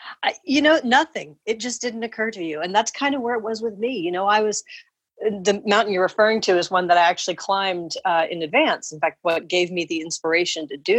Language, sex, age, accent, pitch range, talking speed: English, female, 40-59, American, 180-240 Hz, 245 wpm